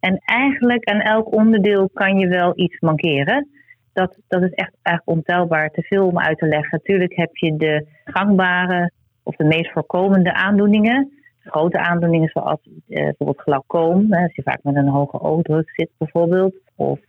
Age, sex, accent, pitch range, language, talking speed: 30-49, female, Dutch, 155-195 Hz, Dutch, 165 wpm